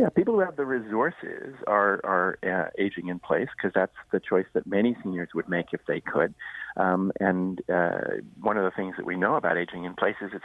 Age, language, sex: 40-59, English, male